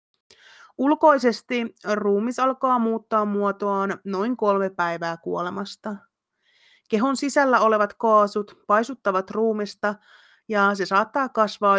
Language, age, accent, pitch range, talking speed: Finnish, 30-49, native, 195-225 Hz, 95 wpm